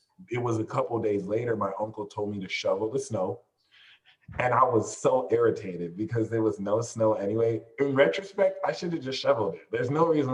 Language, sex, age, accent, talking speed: English, male, 30-49, American, 210 wpm